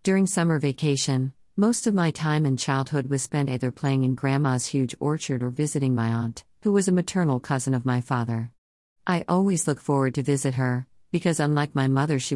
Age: 50-69